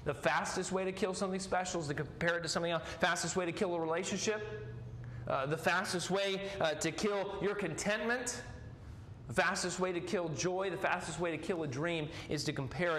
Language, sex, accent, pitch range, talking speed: English, male, American, 130-180 Hz, 215 wpm